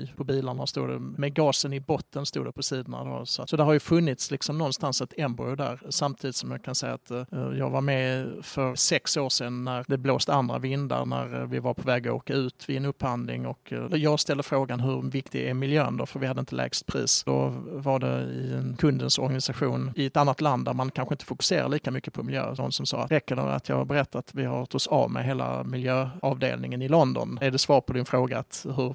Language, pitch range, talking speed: Swedish, 120-140 Hz, 245 wpm